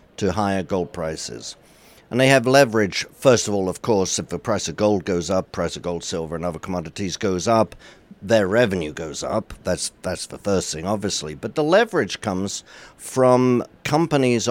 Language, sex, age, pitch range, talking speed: English, male, 60-79, 100-125 Hz, 185 wpm